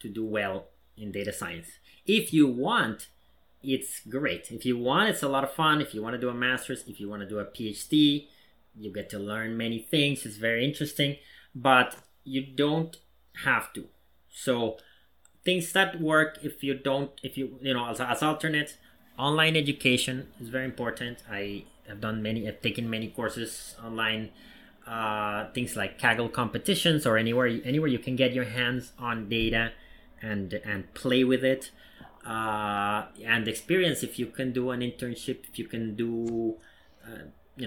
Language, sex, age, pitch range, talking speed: English, male, 30-49, 110-130 Hz, 175 wpm